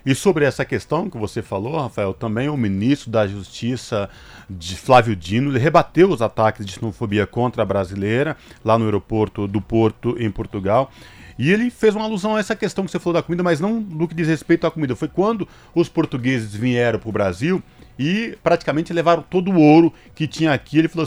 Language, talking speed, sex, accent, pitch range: Portuguese, 205 wpm, male, Brazilian, 110-155 Hz